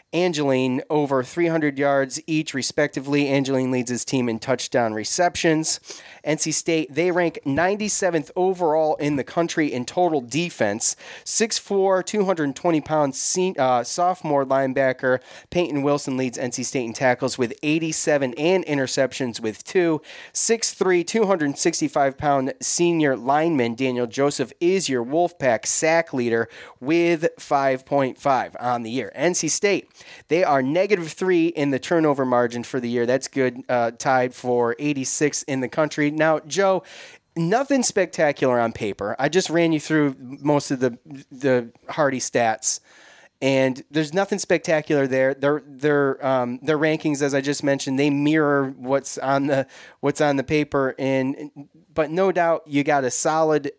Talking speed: 145 wpm